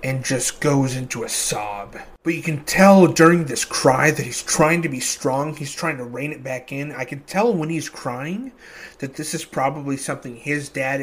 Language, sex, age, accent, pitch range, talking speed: English, male, 30-49, American, 130-155 Hz, 210 wpm